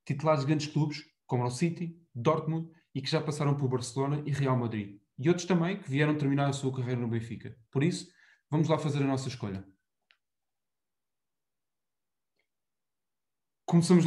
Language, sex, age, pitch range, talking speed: Portuguese, male, 20-39, 125-160 Hz, 160 wpm